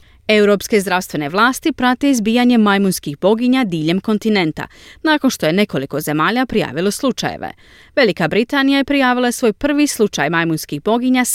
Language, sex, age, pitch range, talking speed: Croatian, female, 30-49, 165-250 Hz, 130 wpm